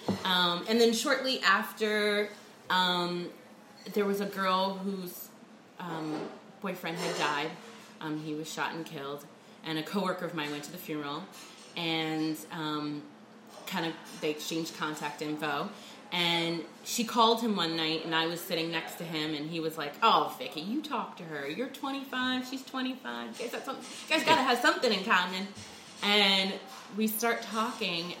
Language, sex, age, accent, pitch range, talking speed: English, female, 30-49, American, 155-220 Hz, 165 wpm